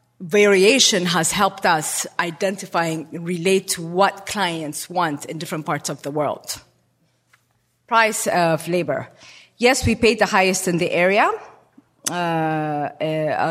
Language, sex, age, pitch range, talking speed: English, female, 30-49, 160-195 Hz, 130 wpm